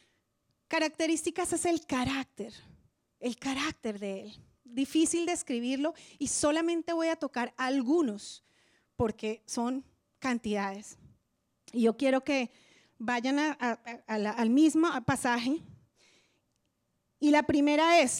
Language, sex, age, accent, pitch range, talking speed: English, female, 30-49, Colombian, 230-305 Hz, 120 wpm